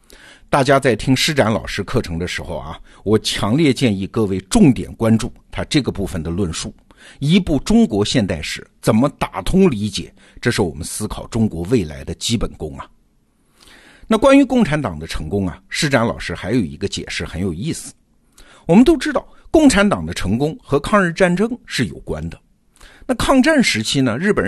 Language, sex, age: Chinese, male, 50-69